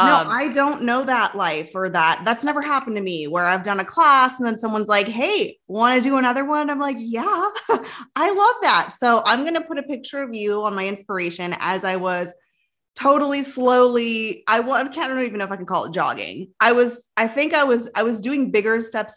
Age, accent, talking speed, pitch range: 20-39, American, 230 wpm, 190-275 Hz